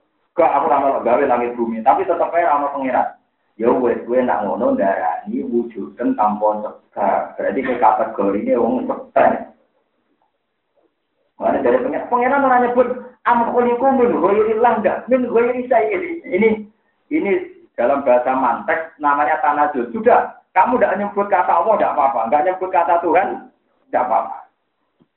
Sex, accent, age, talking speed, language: male, native, 40-59, 155 wpm, Indonesian